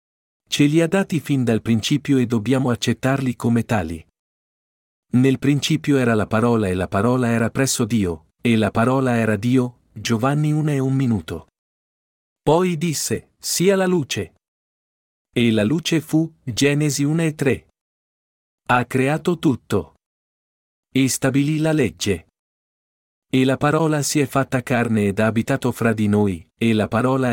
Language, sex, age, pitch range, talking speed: Italian, male, 50-69, 105-140 Hz, 150 wpm